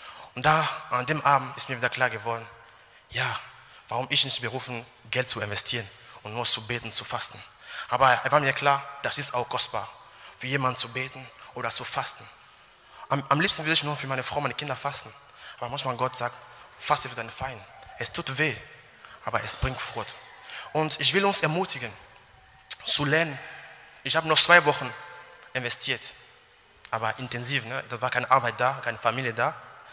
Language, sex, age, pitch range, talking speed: German, male, 20-39, 125-145 Hz, 180 wpm